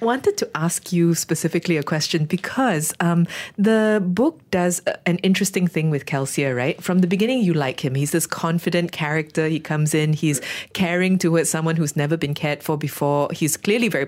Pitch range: 150-185 Hz